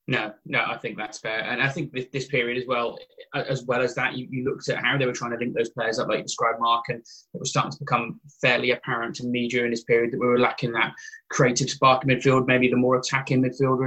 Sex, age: male, 20-39